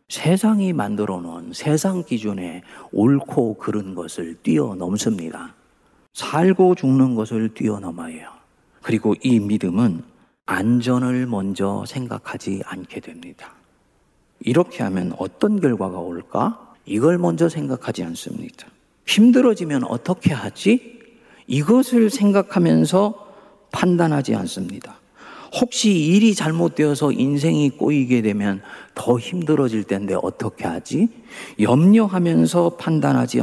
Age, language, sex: 40-59, Korean, male